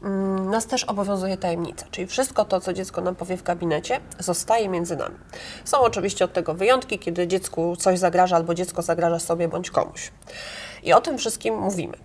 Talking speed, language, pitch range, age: 180 wpm, Polish, 180-215 Hz, 30-49